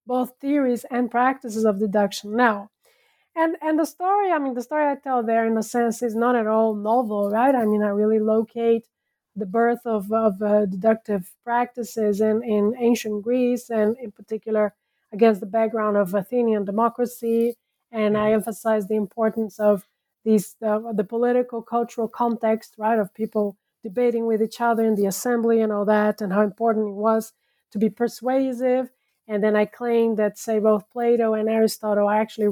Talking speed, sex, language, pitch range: 180 wpm, female, English, 215-245 Hz